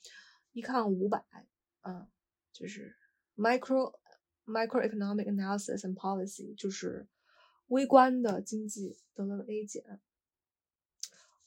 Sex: female